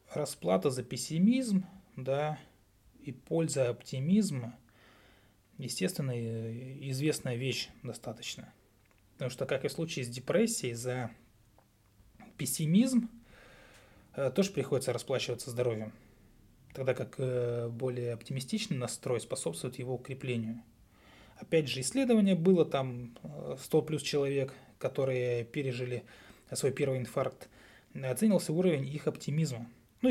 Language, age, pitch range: Russian, 20-39, 120-150 Hz